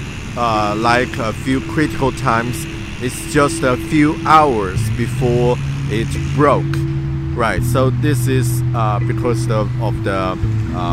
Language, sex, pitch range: Chinese, male, 110-140 Hz